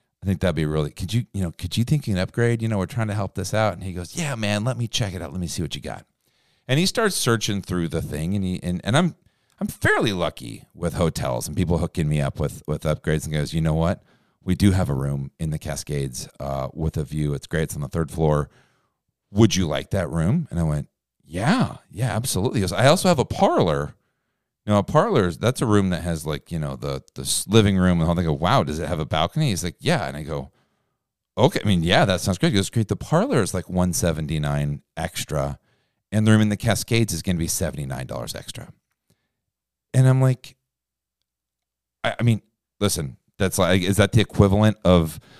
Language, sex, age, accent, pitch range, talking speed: English, male, 40-59, American, 80-115 Hz, 240 wpm